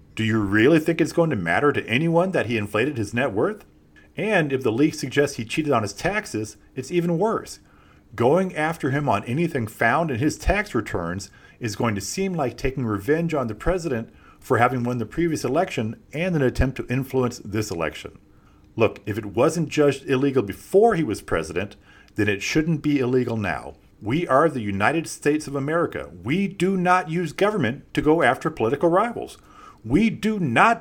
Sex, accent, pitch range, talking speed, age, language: male, American, 110-170 Hz, 190 wpm, 40-59, English